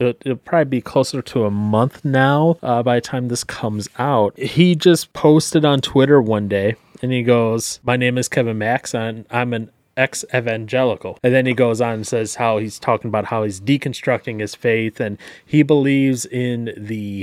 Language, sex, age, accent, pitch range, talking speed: English, male, 30-49, American, 115-150 Hz, 195 wpm